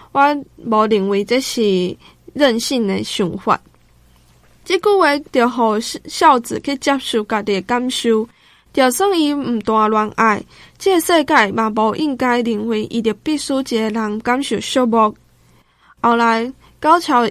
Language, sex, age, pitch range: Chinese, female, 10-29, 215-270 Hz